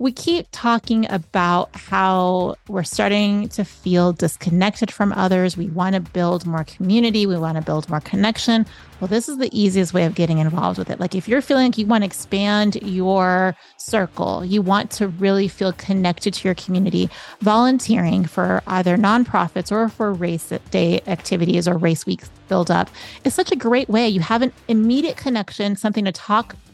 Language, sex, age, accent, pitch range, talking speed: English, female, 30-49, American, 180-225 Hz, 180 wpm